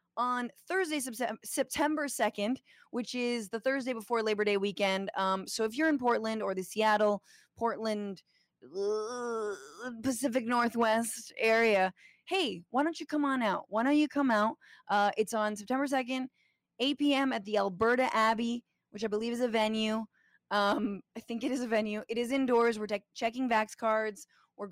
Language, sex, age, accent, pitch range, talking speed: English, female, 20-39, American, 205-260 Hz, 170 wpm